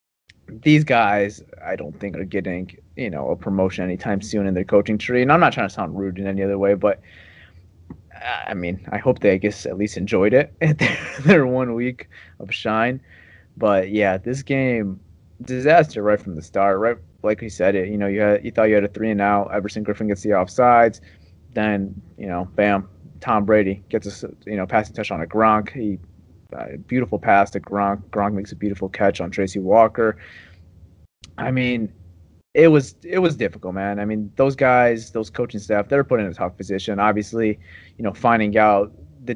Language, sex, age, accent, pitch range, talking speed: English, male, 20-39, American, 95-120 Hz, 205 wpm